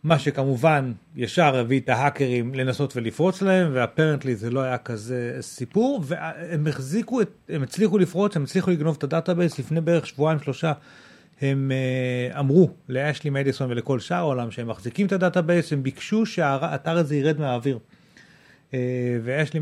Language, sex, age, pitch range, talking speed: Hebrew, male, 40-59, 130-170 Hz, 150 wpm